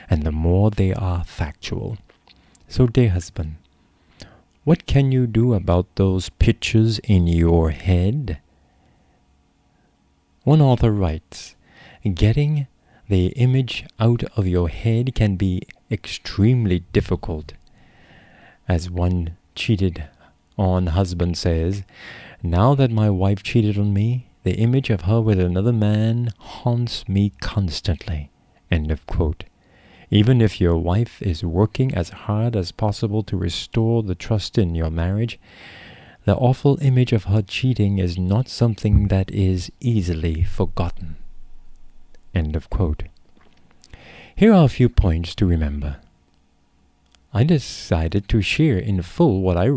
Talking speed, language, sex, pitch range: 130 wpm, English, male, 85-115 Hz